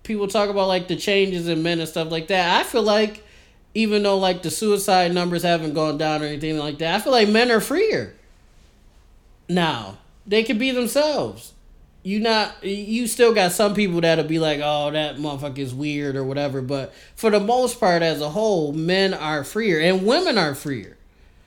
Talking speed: 200 wpm